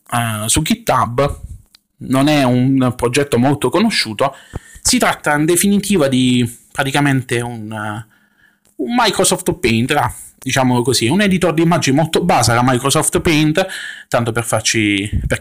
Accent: native